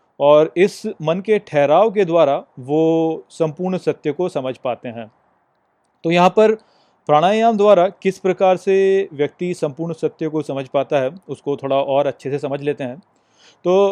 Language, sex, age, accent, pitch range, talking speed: Hindi, male, 30-49, native, 145-180 Hz, 165 wpm